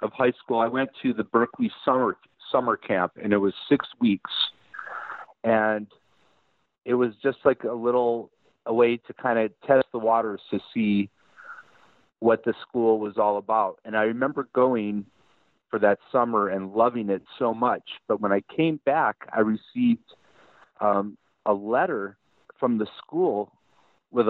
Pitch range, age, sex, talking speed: 110-130 Hz, 40-59, male, 160 wpm